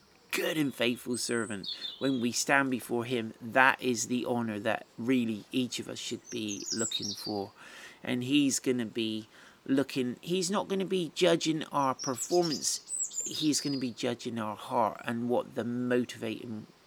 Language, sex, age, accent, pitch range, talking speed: English, male, 40-59, British, 120-170 Hz, 165 wpm